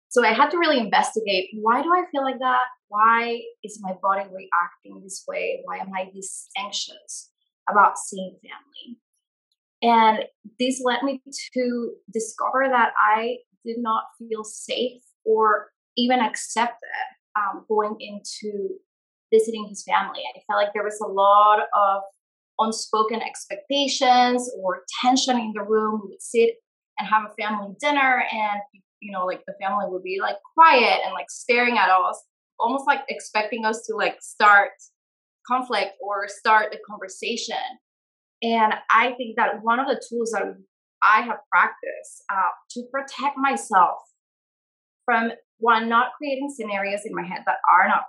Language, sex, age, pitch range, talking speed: English, female, 20-39, 210-255 Hz, 155 wpm